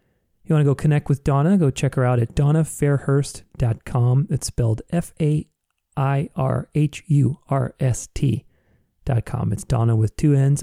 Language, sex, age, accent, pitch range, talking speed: English, male, 40-59, American, 115-145 Hz, 120 wpm